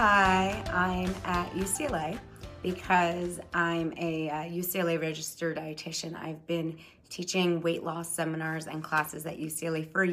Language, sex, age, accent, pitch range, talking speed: English, female, 30-49, American, 160-180 Hz, 125 wpm